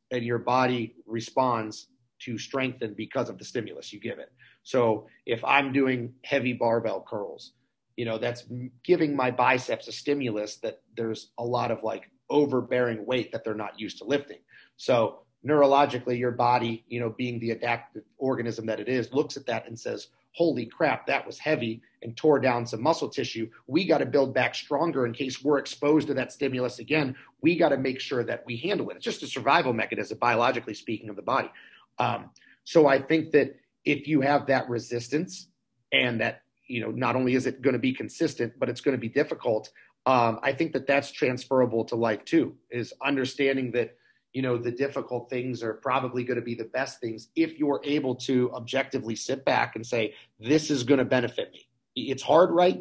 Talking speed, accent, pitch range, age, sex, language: 200 wpm, American, 120-140 Hz, 40-59, male, English